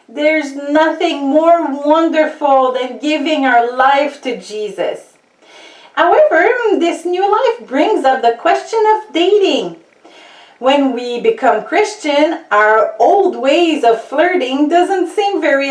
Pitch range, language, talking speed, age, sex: 235-335 Hz, English, 120 wpm, 40-59, female